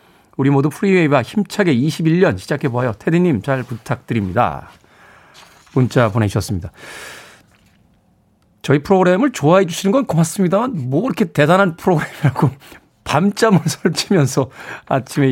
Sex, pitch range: male, 125-185 Hz